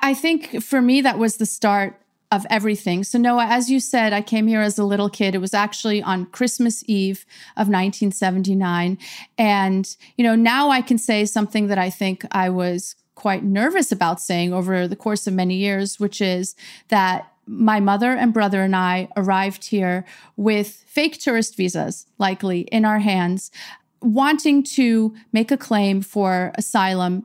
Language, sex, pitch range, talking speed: English, female, 190-225 Hz, 175 wpm